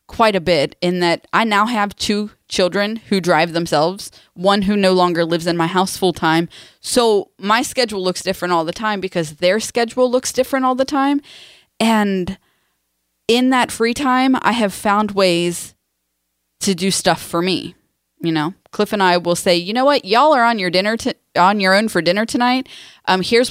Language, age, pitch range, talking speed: English, 20-39, 155-210 Hz, 195 wpm